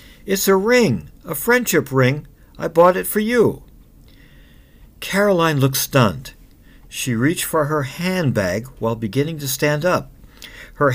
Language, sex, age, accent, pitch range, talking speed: English, male, 60-79, American, 120-165 Hz, 135 wpm